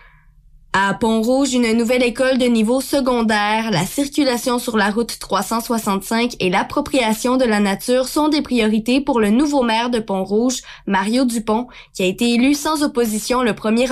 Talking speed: 165 wpm